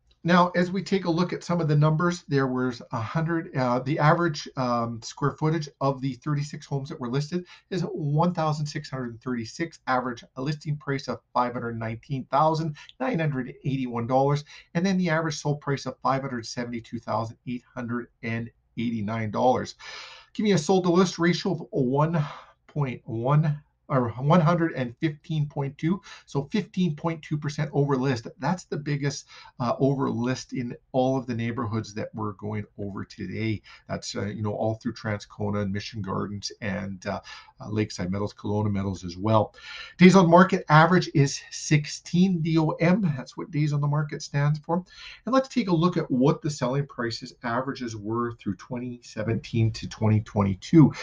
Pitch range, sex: 120-160 Hz, male